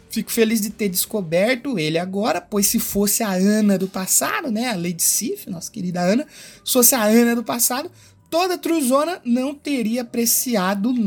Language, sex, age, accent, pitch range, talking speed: Portuguese, male, 20-39, Brazilian, 195-255 Hz, 175 wpm